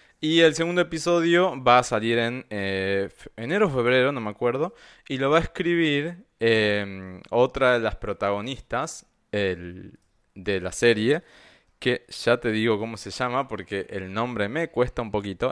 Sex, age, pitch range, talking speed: male, 20-39, 105-145 Hz, 165 wpm